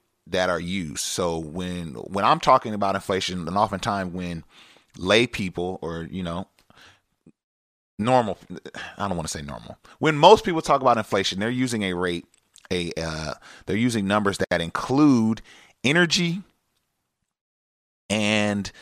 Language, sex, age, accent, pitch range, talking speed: English, male, 30-49, American, 85-110 Hz, 140 wpm